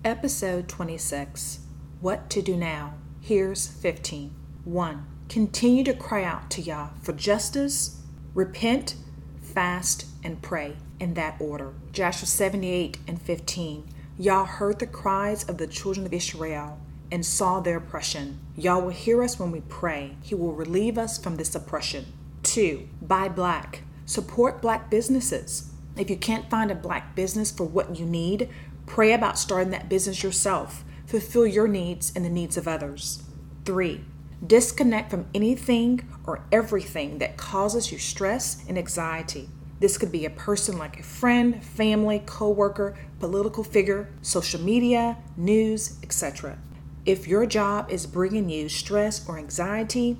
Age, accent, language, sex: 40-59, American, English, female